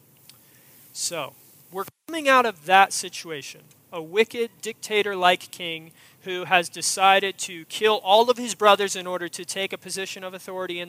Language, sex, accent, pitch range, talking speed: English, male, American, 155-195 Hz, 160 wpm